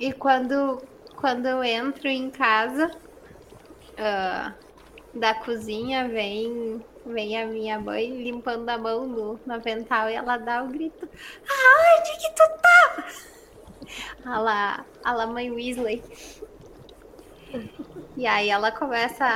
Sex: female